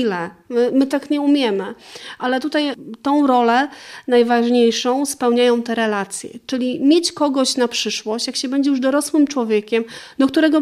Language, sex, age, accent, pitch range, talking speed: Polish, female, 40-59, native, 210-255 Hz, 145 wpm